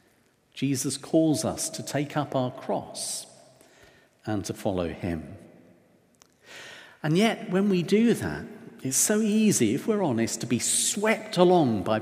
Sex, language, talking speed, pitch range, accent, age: male, English, 145 wpm, 125-205 Hz, British, 50-69